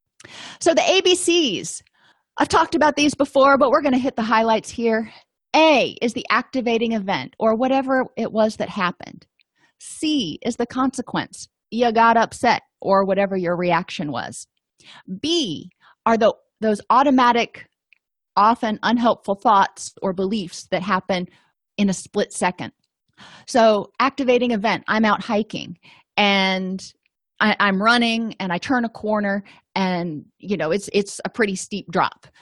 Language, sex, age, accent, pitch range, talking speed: English, female, 30-49, American, 185-240 Hz, 145 wpm